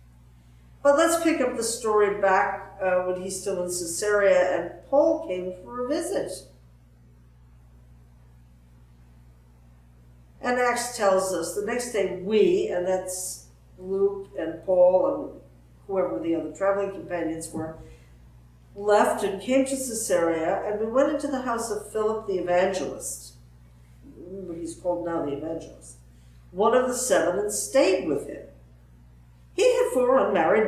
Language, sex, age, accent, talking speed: English, female, 60-79, American, 135 wpm